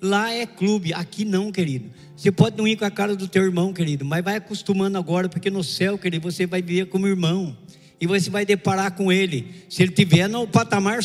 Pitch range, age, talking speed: 170-210 Hz, 60-79, 225 wpm